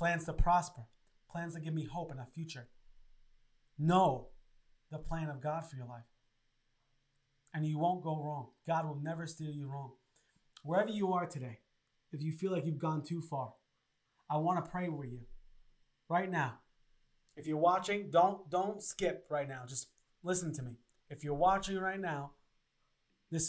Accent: American